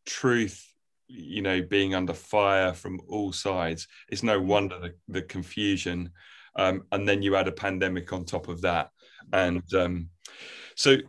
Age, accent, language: 30-49, British, English